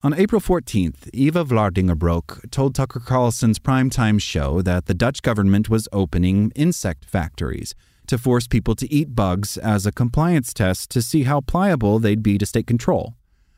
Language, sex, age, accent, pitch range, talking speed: English, male, 30-49, American, 95-130 Hz, 165 wpm